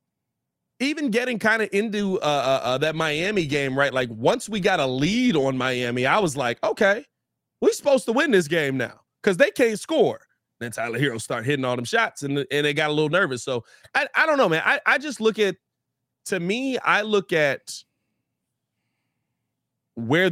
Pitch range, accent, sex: 130-185 Hz, American, male